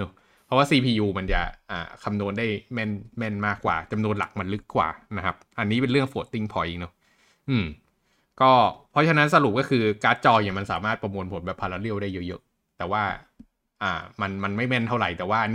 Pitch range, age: 95-120 Hz, 20-39